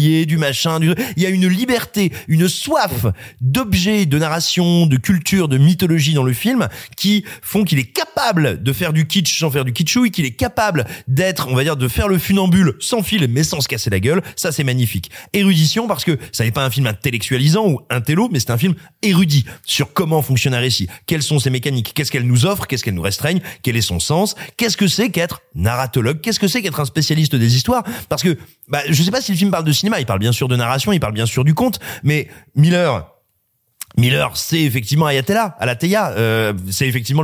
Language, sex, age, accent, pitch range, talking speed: French, male, 30-49, French, 125-180 Hz, 225 wpm